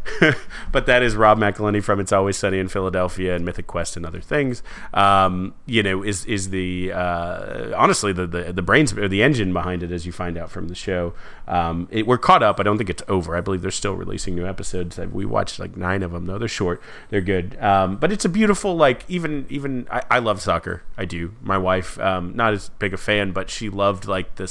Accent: American